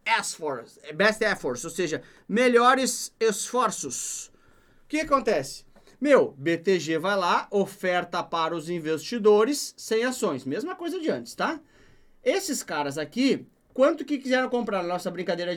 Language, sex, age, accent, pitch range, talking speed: Portuguese, male, 30-49, Brazilian, 180-255 Hz, 130 wpm